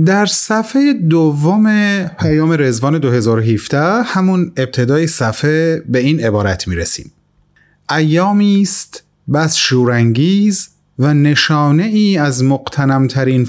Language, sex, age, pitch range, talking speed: Persian, male, 30-49, 120-165 Hz, 95 wpm